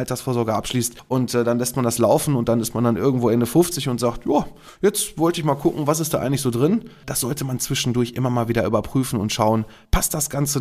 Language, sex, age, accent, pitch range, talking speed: German, male, 20-39, German, 115-135 Hz, 250 wpm